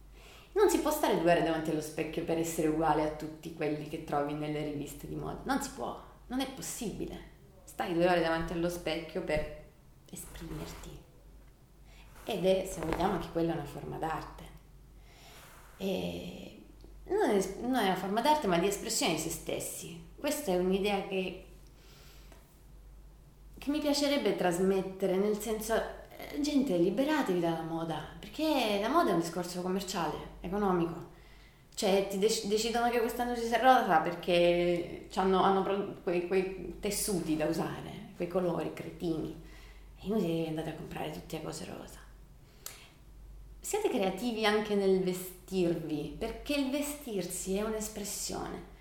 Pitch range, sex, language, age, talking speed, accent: 165-205 Hz, female, Italian, 30-49, 145 wpm, native